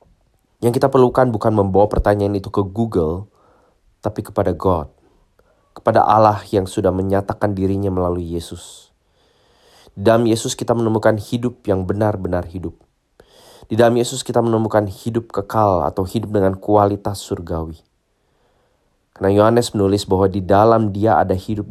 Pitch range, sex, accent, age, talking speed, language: 90-110 Hz, male, Indonesian, 30-49, 140 wpm, English